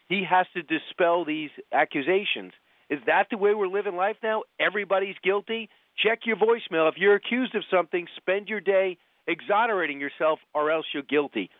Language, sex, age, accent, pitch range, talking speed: English, male, 40-59, American, 140-195 Hz, 170 wpm